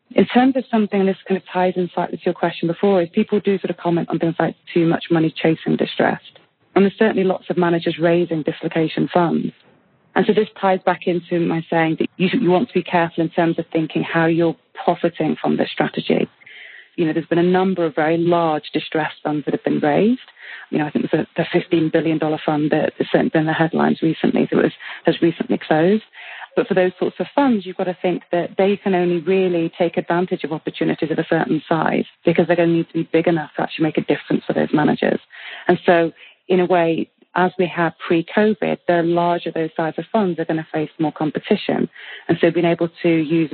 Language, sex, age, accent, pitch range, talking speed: English, female, 30-49, British, 165-185 Hz, 225 wpm